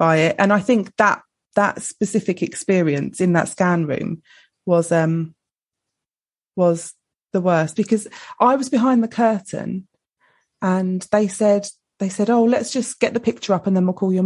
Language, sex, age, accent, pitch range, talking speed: English, female, 20-39, British, 175-210 Hz, 170 wpm